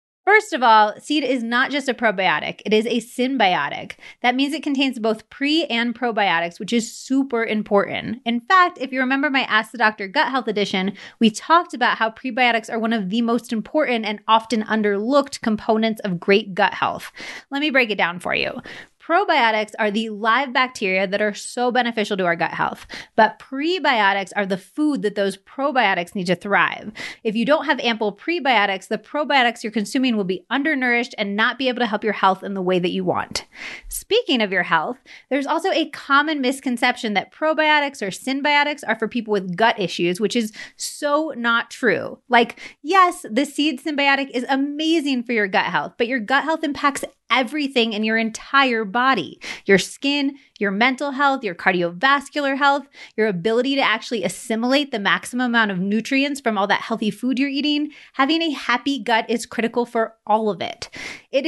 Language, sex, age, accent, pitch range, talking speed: English, female, 30-49, American, 210-275 Hz, 190 wpm